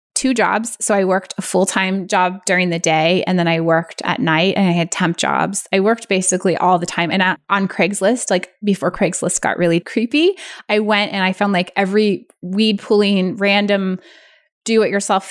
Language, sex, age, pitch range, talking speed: English, female, 20-39, 180-210 Hz, 190 wpm